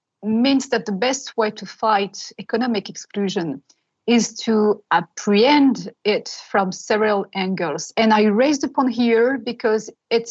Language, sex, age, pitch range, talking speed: English, female, 30-49, 200-235 Hz, 135 wpm